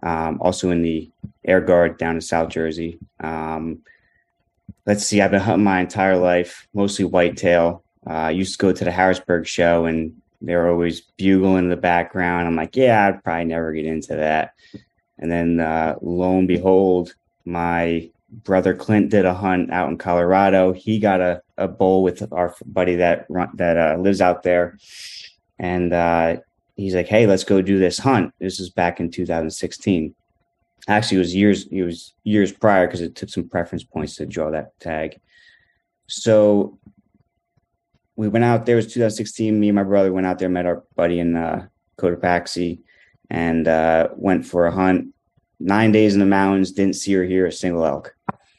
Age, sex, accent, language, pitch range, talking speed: 20-39, male, American, English, 85-100 Hz, 185 wpm